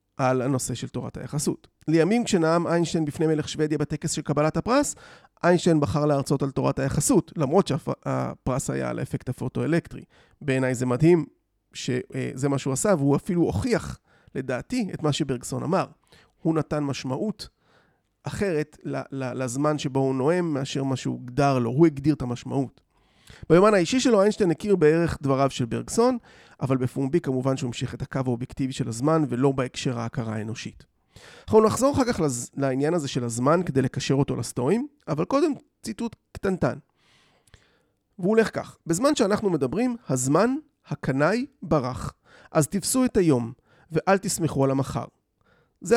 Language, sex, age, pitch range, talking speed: Hebrew, male, 30-49, 130-175 Hz, 150 wpm